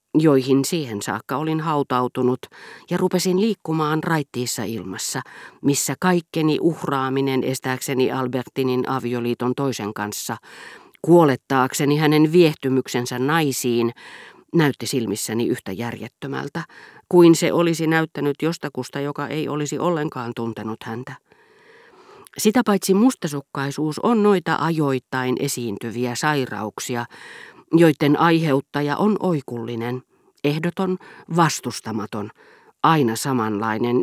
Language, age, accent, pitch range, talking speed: Finnish, 40-59, native, 125-170 Hz, 95 wpm